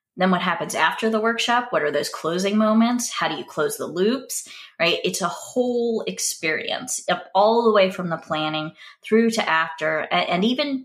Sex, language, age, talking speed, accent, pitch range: female, English, 20-39, 185 wpm, American, 170-215 Hz